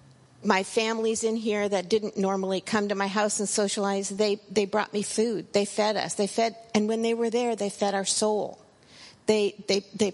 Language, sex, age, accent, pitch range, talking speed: English, female, 50-69, American, 190-220 Hz, 205 wpm